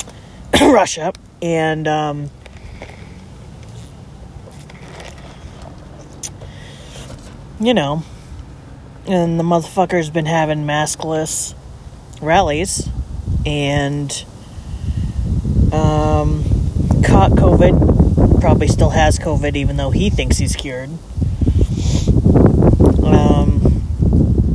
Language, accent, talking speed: English, American, 70 wpm